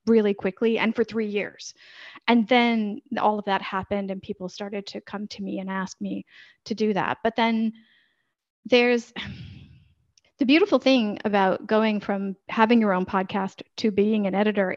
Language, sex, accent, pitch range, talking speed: English, female, American, 195-230 Hz, 170 wpm